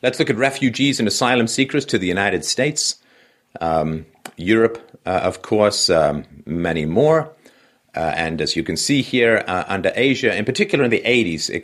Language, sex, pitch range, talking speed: English, male, 80-115 Hz, 180 wpm